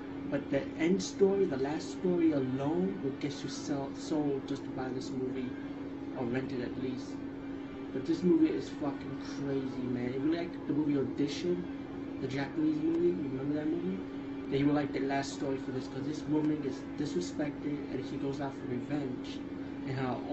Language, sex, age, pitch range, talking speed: English, male, 20-39, 135-195 Hz, 190 wpm